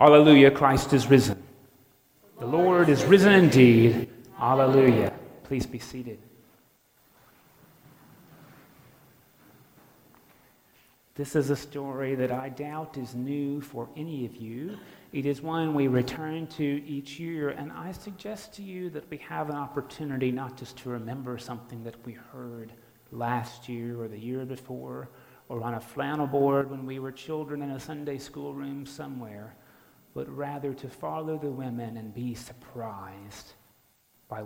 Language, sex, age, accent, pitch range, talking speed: English, male, 40-59, American, 120-150 Hz, 145 wpm